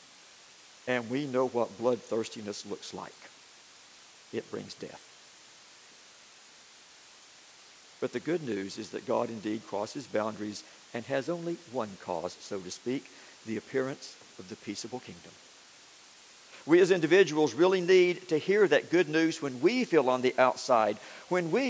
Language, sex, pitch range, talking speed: English, male, 130-185 Hz, 145 wpm